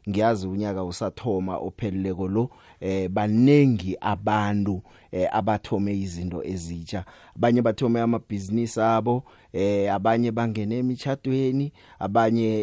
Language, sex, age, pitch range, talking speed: English, male, 30-49, 90-115 Hz, 95 wpm